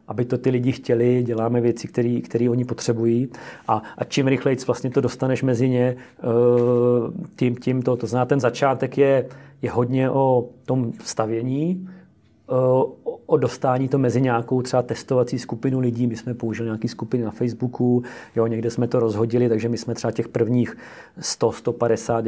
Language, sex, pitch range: Czech, male, 115-130 Hz